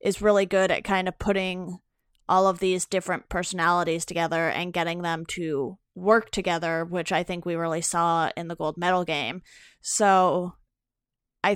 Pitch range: 175-205 Hz